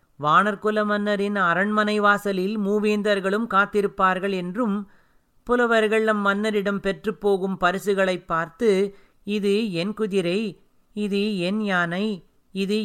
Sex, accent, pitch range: male, native, 170-205 Hz